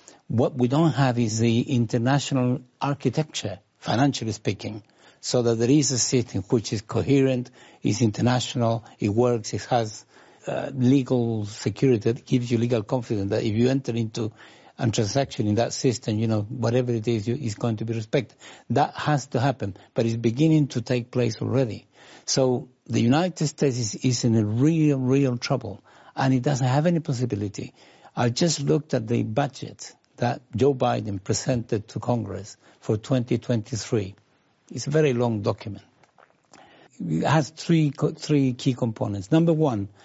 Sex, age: male, 60-79